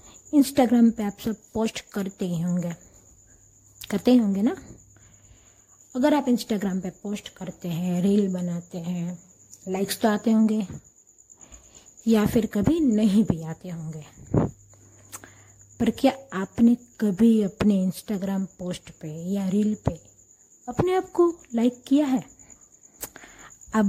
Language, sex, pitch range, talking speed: Hindi, female, 180-230 Hz, 125 wpm